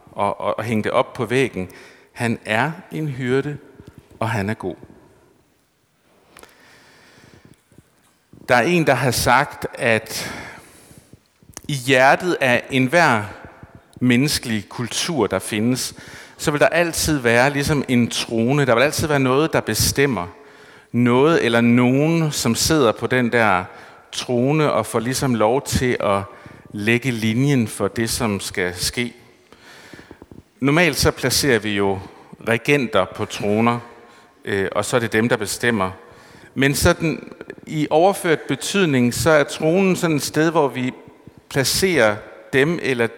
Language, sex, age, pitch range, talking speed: Danish, male, 50-69, 110-145 Hz, 140 wpm